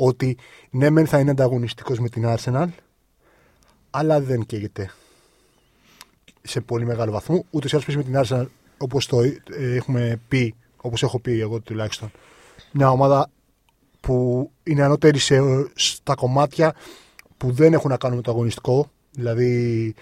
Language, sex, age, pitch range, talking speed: Greek, male, 30-49, 120-150 Hz, 140 wpm